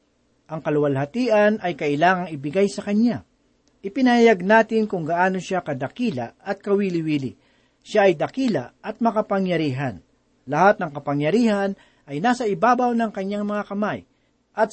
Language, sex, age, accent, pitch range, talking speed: Filipino, male, 40-59, native, 155-225 Hz, 125 wpm